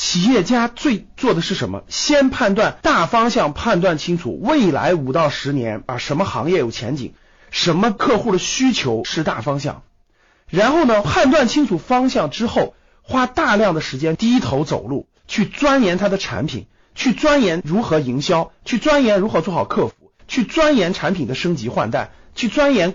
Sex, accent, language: male, native, Chinese